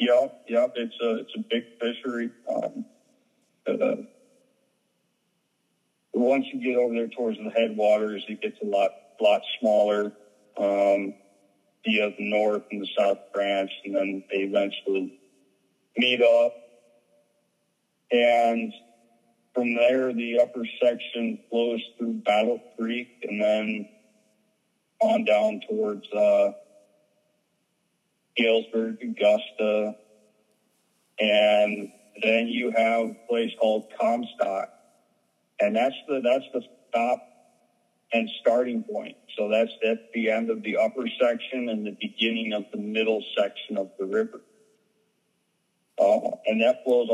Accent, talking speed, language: American, 120 wpm, English